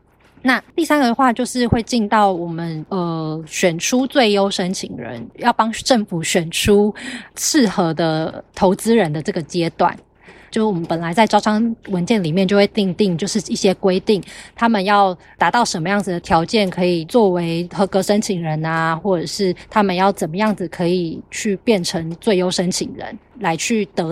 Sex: female